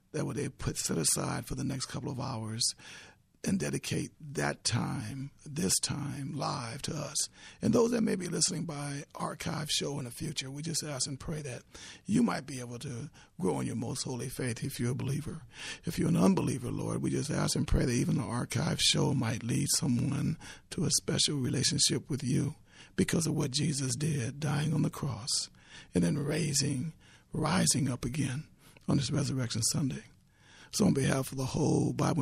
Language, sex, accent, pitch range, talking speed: English, male, American, 130-155 Hz, 195 wpm